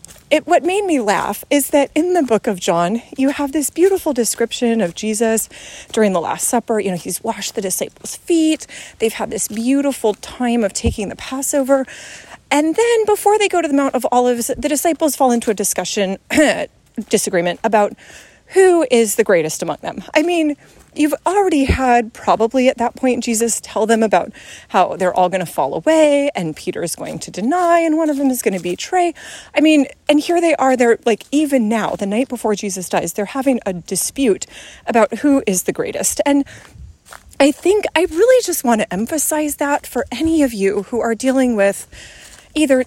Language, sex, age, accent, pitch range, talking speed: English, female, 30-49, American, 215-300 Hz, 195 wpm